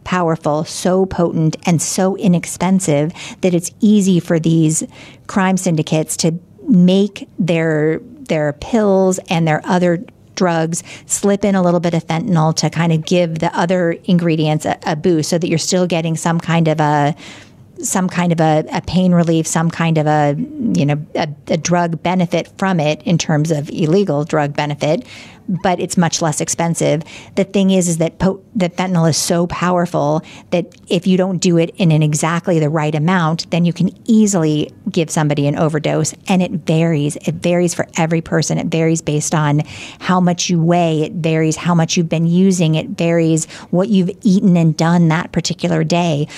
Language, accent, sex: English, American, female